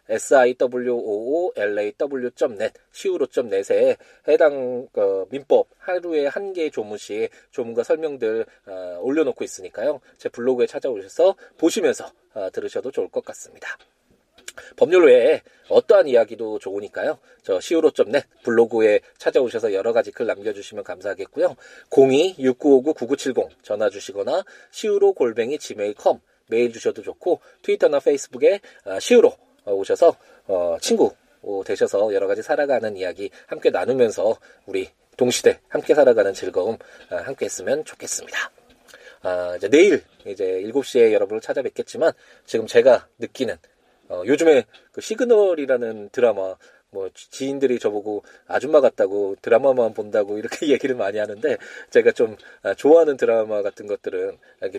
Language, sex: Korean, male